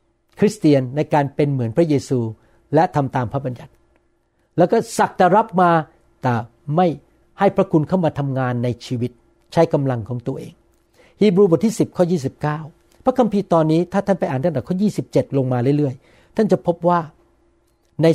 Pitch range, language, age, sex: 145-180 Hz, Thai, 60-79, male